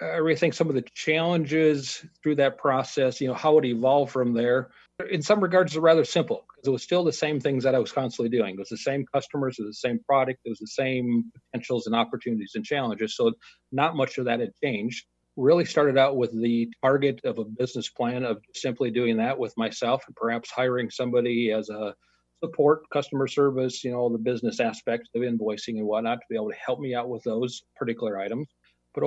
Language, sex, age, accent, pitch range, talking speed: English, male, 40-59, American, 115-145 Hz, 220 wpm